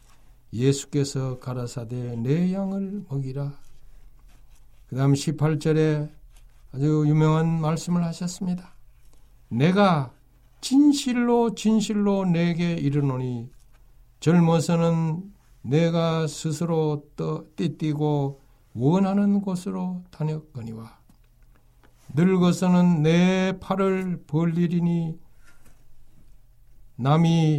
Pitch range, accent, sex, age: 125-170 Hz, native, male, 60-79